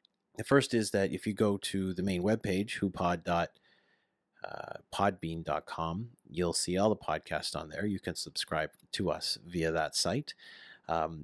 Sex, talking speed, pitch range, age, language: male, 150 wpm, 85-110 Hz, 30-49, English